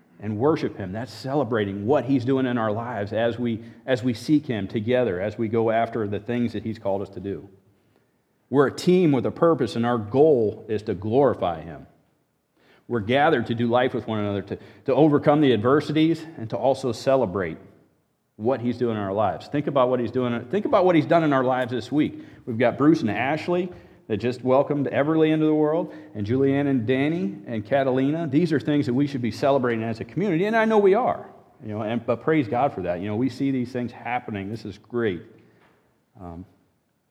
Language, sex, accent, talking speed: English, male, American, 215 wpm